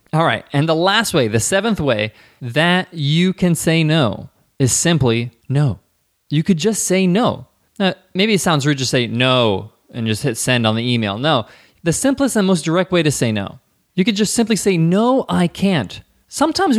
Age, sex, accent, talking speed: 20-39, male, American, 200 wpm